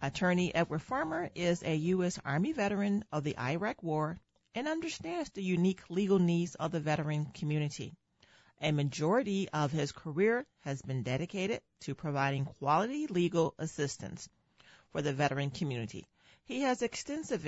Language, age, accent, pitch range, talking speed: English, 40-59, American, 150-195 Hz, 145 wpm